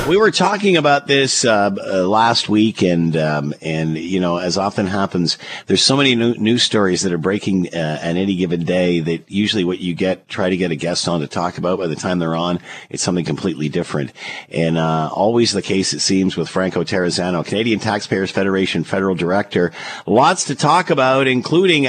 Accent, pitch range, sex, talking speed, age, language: American, 85-105 Hz, male, 205 wpm, 50-69, English